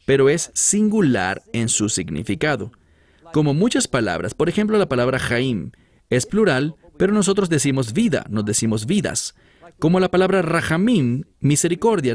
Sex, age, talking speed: male, 40-59, 140 wpm